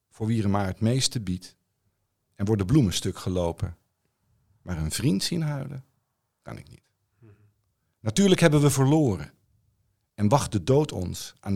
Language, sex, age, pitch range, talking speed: Dutch, male, 50-69, 95-125 Hz, 155 wpm